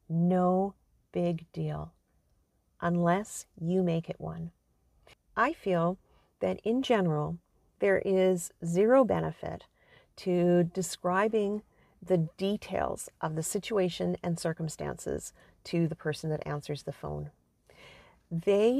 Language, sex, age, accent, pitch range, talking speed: English, female, 40-59, American, 165-195 Hz, 110 wpm